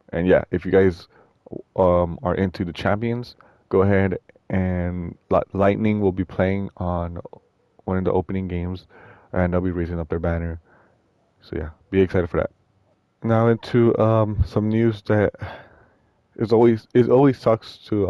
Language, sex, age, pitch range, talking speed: English, male, 20-39, 85-100 Hz, 165 wpm